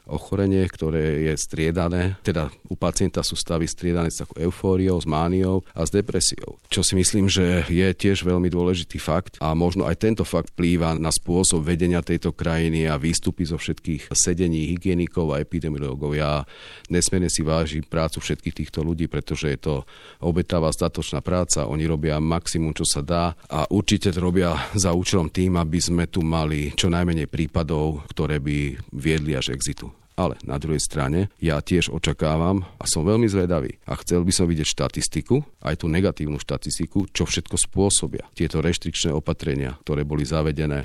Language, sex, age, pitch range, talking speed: Slovak, male, 40-59, 75-90 Hz, 170 wpm